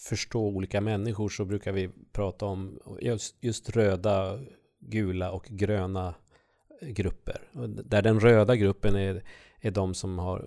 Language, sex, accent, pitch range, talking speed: Swedish, male, native, 95-120 Hz, 140 wpm